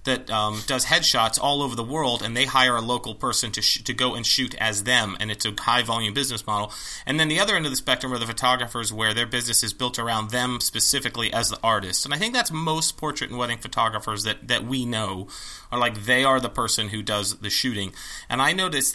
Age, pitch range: 30-49, 115-135 Hz